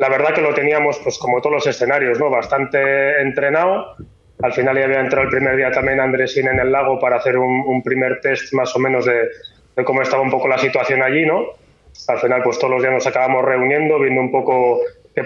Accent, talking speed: Spanish, 230 wpm